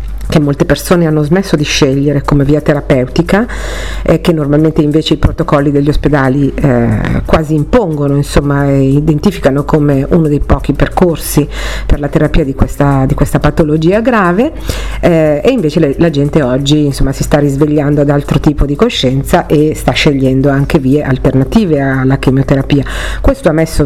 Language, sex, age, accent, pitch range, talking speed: Italian, female, 50-69, native, 135-160 Hz, 155 wpm